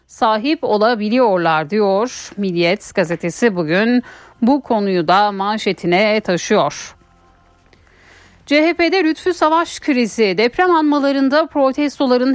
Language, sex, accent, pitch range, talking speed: Turkish, female, native, 200-255 Hz, 85 wpm